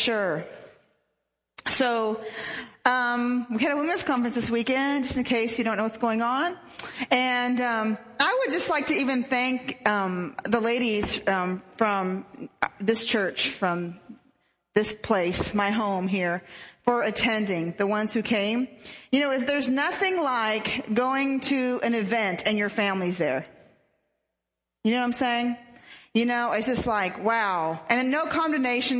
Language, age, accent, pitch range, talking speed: English, 40-59, American, 200-250 Hz, 155 wpm